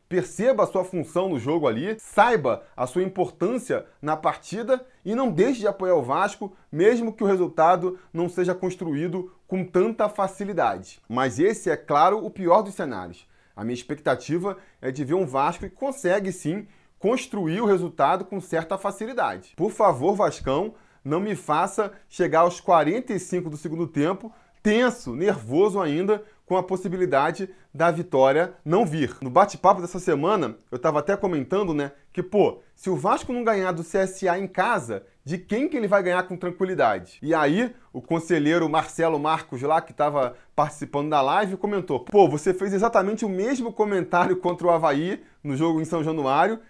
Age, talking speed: 20-39, 170 wpm